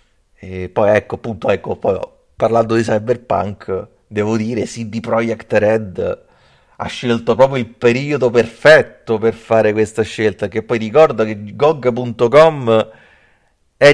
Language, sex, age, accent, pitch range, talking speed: Italian, male, 30-49, native, 105-140 Hz, 125 wpm